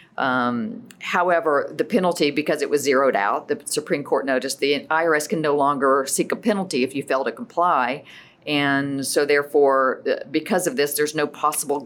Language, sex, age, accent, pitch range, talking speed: English, female, 50-69, American, 135-165 Hz, 175 wpm